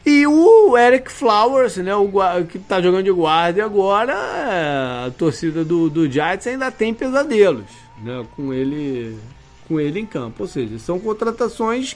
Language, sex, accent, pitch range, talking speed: Portuguese, male, Brazilian, 150-230 Hz, 145 wpm